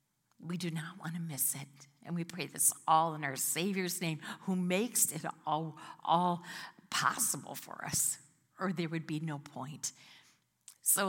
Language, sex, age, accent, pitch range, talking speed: English, female, 50-69, American, 160-215 Hz, 170 wpm